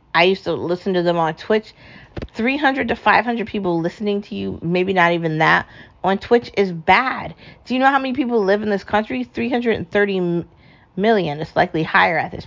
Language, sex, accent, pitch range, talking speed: English, female, American, 170-210 Hz, 190 wpm